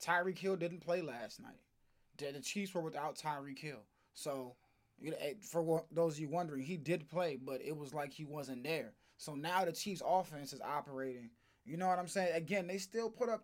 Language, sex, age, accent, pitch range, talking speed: English, male, 20-39, American, 130-165 Hz, 220 wpm